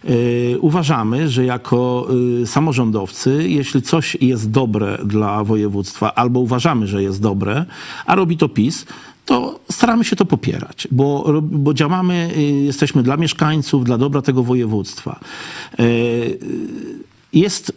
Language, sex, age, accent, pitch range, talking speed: Polish, male, 50-69, native, 120-150 Hz, 120 wpm